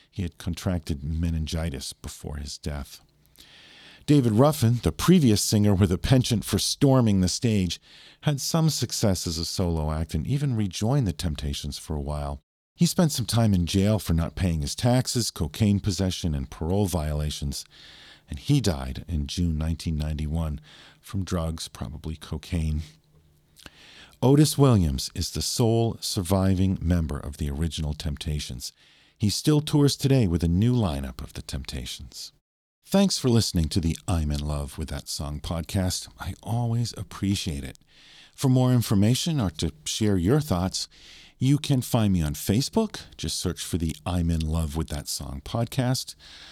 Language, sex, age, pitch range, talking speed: English, male, 40-59, 80-115 Hz, 160 wpm